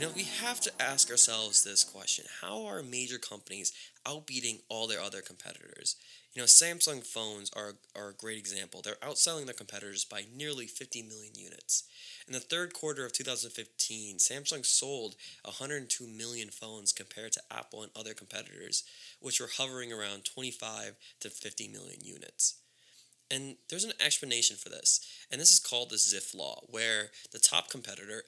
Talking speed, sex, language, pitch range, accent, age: 165 wpm, male, English, 105-135 Hz, American, 20-39